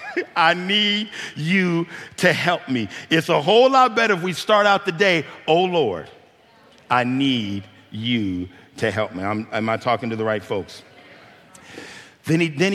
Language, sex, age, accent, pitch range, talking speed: English, male, 50-69, American, 120-155 Hz, 170 wpm